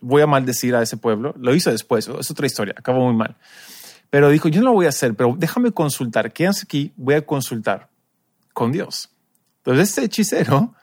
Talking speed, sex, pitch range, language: 200 wpm, male, 125-175 Hz, Spanish